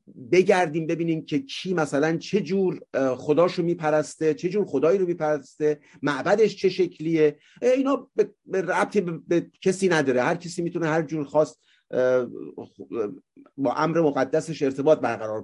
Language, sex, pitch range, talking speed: Persian, male, 150-190 Hz, 130 wpm